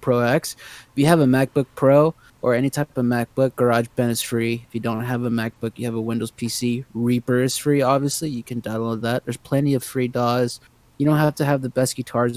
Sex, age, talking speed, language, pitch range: male, 20-39, 240 wpm, English, 125-155 Hz